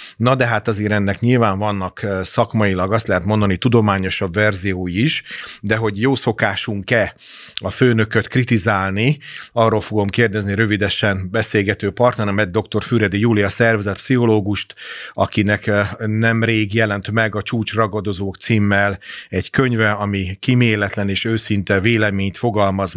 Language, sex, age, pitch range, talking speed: Hungarian, male, 30-49, 100-115 Hz, 125 wpm